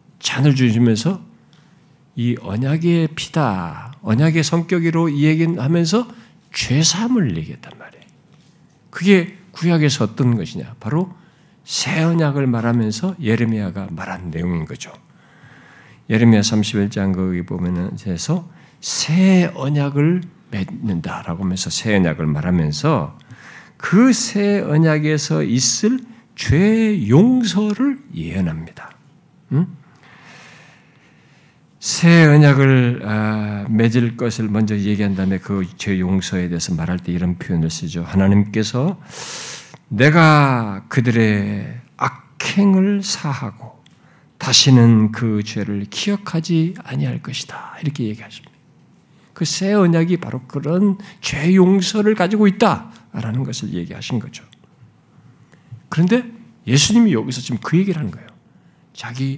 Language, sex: Korean, male